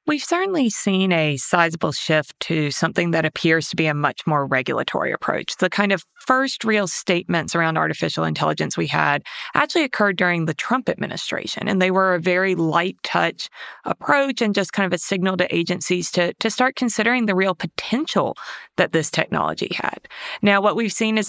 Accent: American